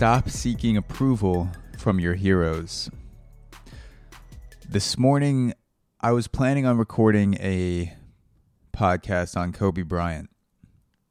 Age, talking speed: 20-39, 95 wpm